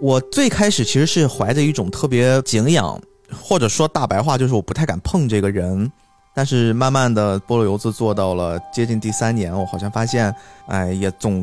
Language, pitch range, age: Chinese, 105-145 Hz, 20-39